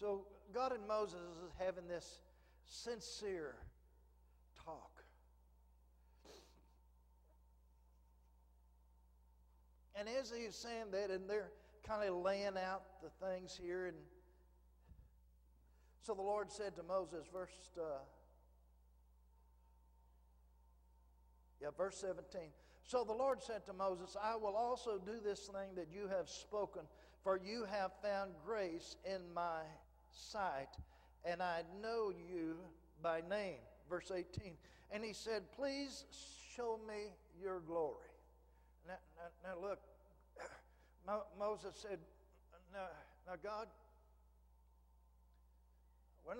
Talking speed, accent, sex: 110 wpm, American, male